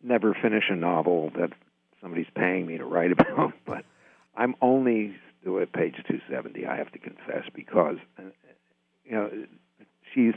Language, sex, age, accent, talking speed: English, male, 60-79, American, 155 wpm